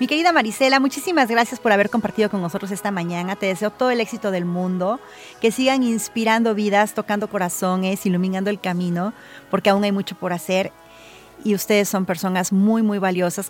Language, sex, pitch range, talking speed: Spanish, female, 195-240 Hz, 180 wpm